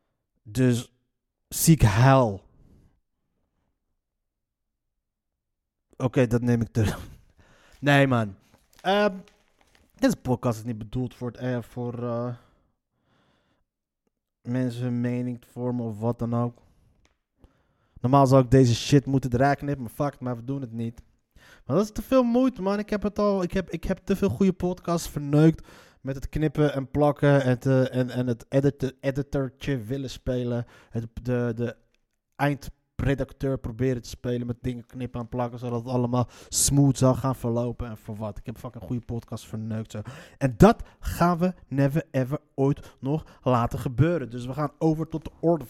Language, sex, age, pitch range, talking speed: Dutch, male, 20-39, 120-150 Hz, 165 wpm